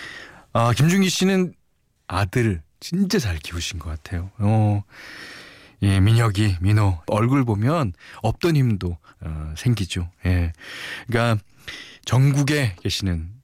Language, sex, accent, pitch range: Korean, male, native, 90-145 Hz